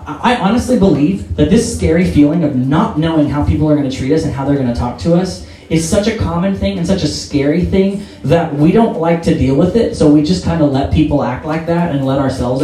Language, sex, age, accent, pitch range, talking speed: English, male, 30-49, American, 120-160 Hz, 265 wpm